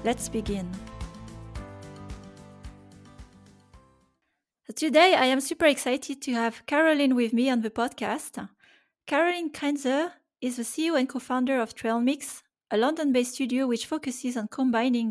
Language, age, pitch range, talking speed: English, 30-49, 220-270 Hz, 125 wpm